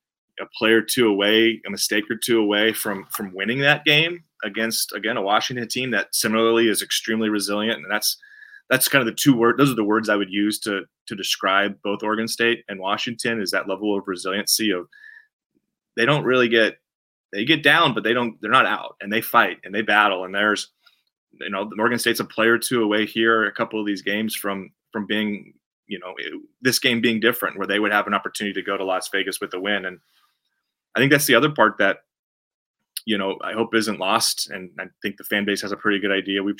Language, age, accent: English, 30-49, American